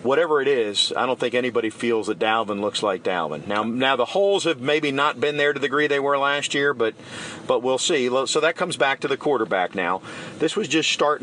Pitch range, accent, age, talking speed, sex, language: 115-155 Hz, American, 40-59, 240 wpm, male, English